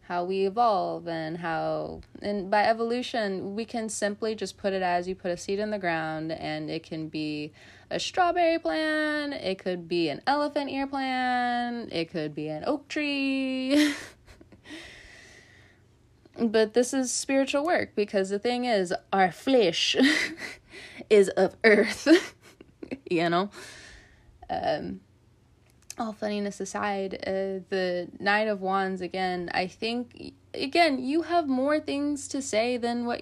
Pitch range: 180-240 Hz